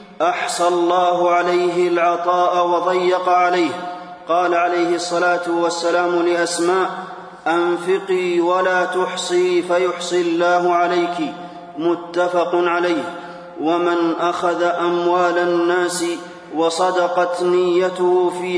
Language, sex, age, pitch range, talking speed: Arabic, male, 30-49, 170-180 Hz, 85 wpm